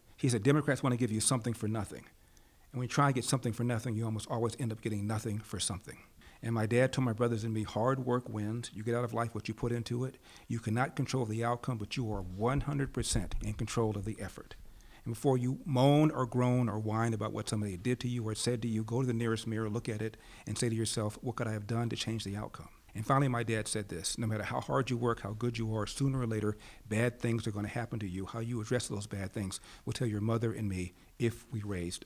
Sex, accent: male, American